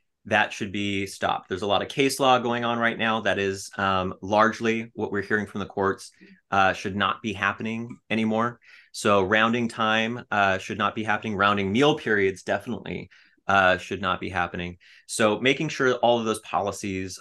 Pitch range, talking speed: 100-125 Hz, 190 wpm